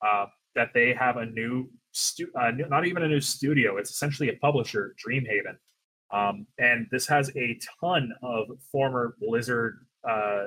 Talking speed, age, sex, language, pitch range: 165 wpm, 30-49, male, English, 115-150 Hz